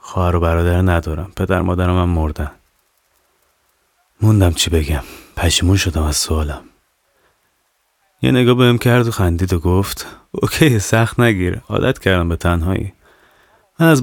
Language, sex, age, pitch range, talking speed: Persian, male, 30-49, 85-110 Hz, 135 wpm